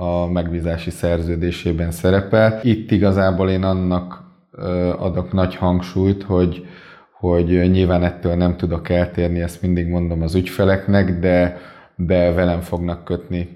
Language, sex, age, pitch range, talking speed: Hungarian, male, 20-39, 90-95 Hz, 125 wpm